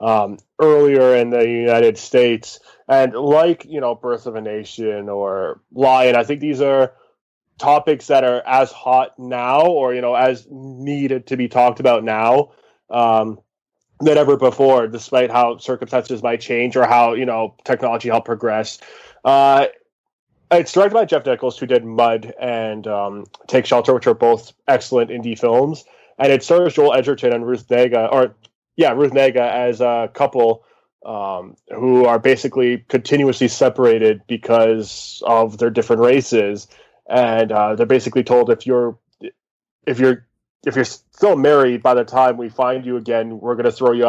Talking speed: 165 wpm